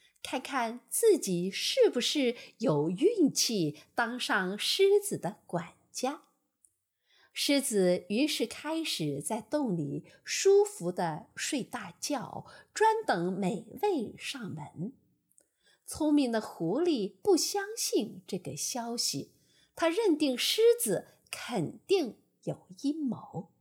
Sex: female